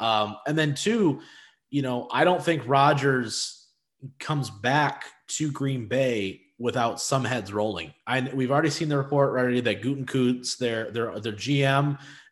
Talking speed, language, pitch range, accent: 155 wpm, English, 110-145 Hz, American